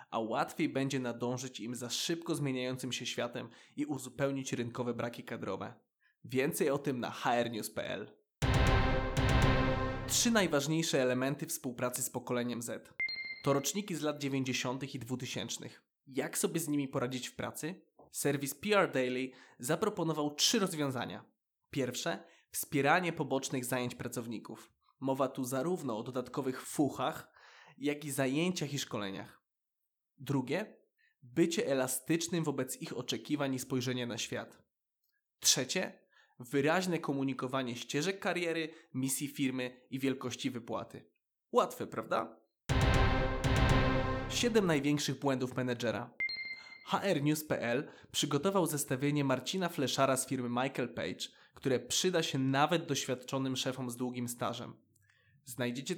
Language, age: Polish, 20-39